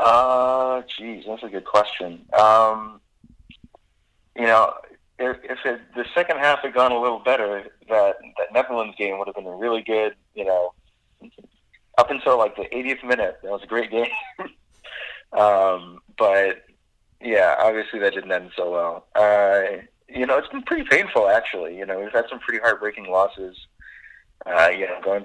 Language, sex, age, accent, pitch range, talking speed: English, male, 20-39, American, 90-110 Hz, 170 wpm